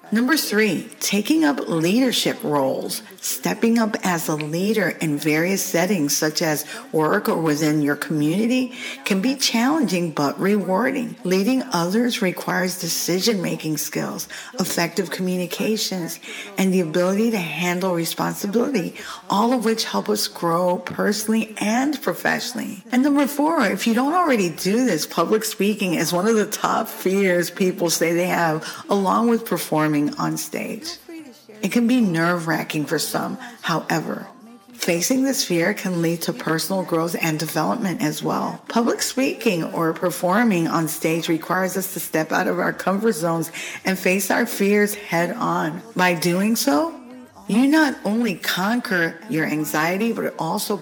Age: 50-69